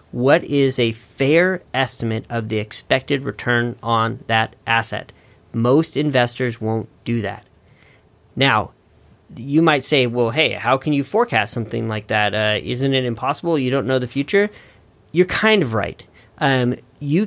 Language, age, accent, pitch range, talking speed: English, 40-59, American, 120-150 Hz, 155 wpm